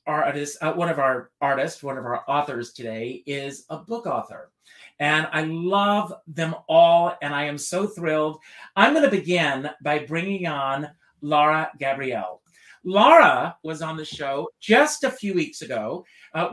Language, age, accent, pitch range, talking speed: English, 40-59, American, 145-220 Hz, 165 wpm